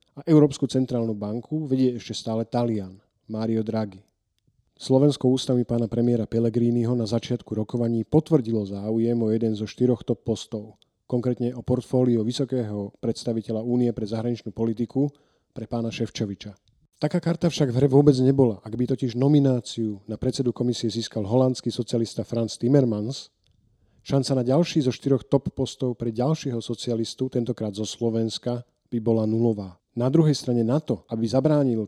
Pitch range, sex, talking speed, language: 110-130 Hz, male, 150 wpm, Slovak